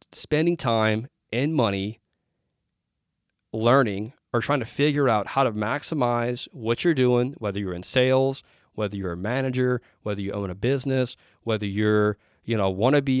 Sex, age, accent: male, 30-49, American